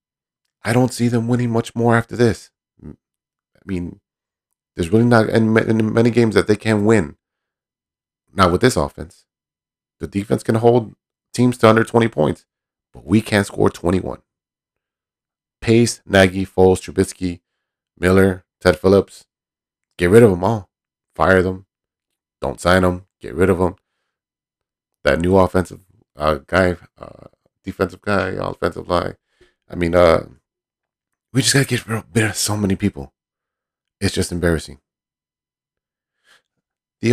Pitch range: 90-115 Hz